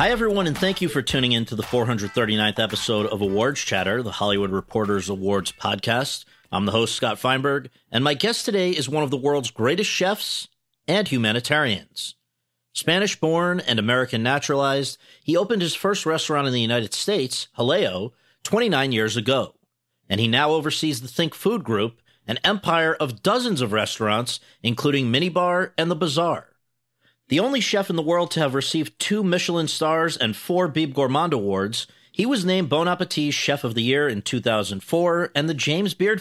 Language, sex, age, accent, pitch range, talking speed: English, male, 40-59, American, 115-170 Hz, 175 wpm